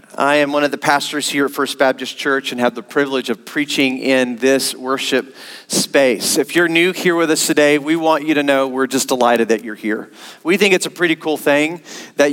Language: English